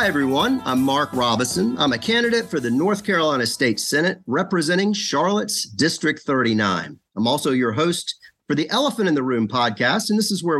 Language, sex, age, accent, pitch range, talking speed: English, male, 40-59, American, 120-165 Hz, 185 wpm